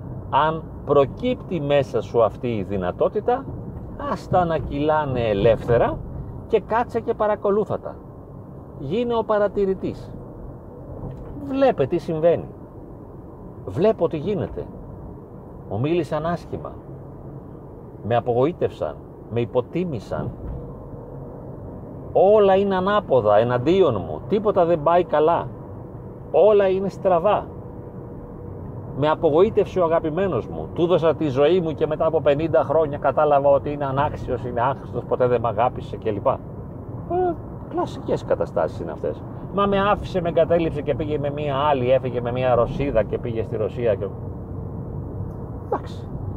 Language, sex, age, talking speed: Greek, male, 40-59, 120 wpm